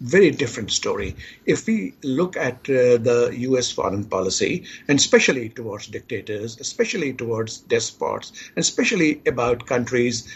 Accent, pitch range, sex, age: Indian, 125-185 Hz, male, 50-69